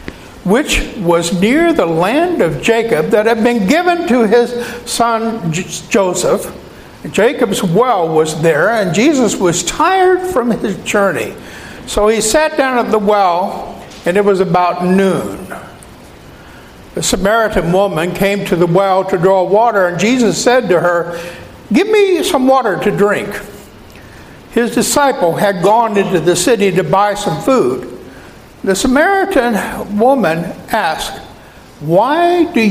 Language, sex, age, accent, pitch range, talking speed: English, male, 60-79, American, 185-240 Hz, 140 wpm